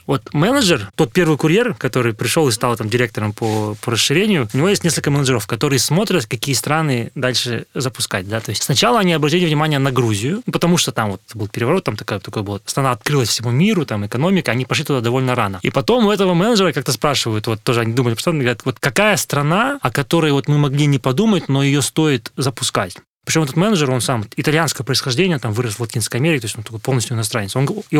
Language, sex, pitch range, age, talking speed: Russian, male, 125-160 Hz, 20-39, 220 wpm